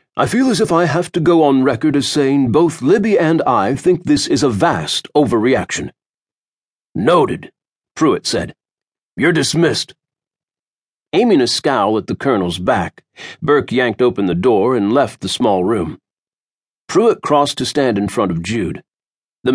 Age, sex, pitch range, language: 40-59, male, 110-150 Hz, English